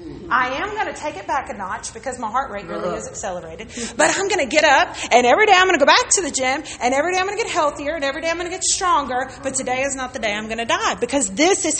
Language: English